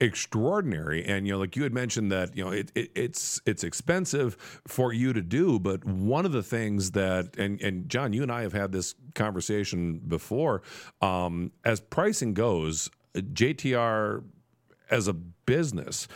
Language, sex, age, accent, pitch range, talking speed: English, male, 40-59, American, 100-145 Hz, 165 wpm